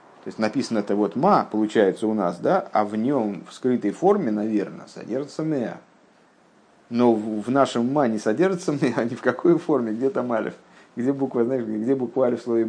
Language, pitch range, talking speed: Russian, 110-155 Hz, 200 wpm